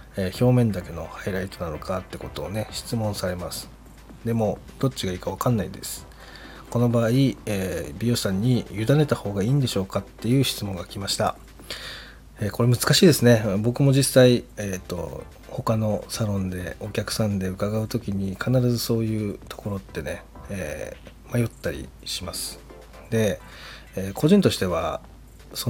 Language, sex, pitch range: Japanese, male, 95-120 Hz